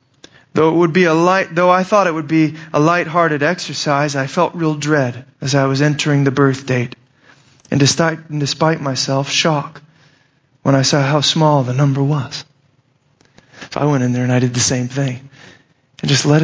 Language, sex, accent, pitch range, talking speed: English, male, American, 135-160 Hz, 205 wpm